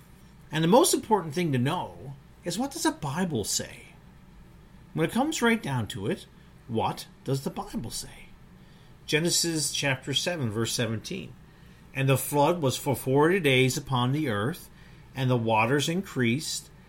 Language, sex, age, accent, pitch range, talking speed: English, male, 50-69, American, 125-160 Hz, 155 wpm